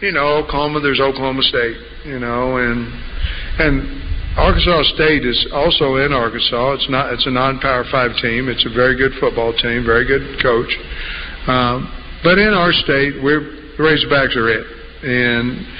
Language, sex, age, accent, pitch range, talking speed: English, male, 50-69, American, 120-140 Hz, 165 wpm